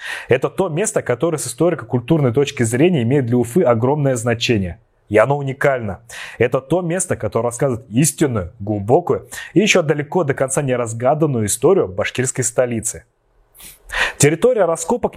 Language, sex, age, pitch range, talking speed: Russian, male, 30-49, 120-160 Hz, 135 wpm